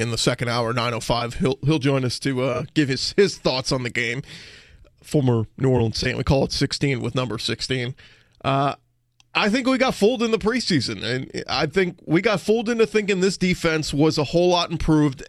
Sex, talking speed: male, 210 wpm